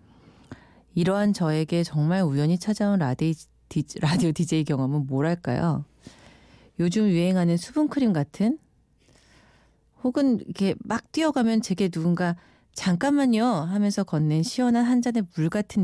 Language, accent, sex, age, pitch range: Korean, native, female, 40-59, 150-210 Hz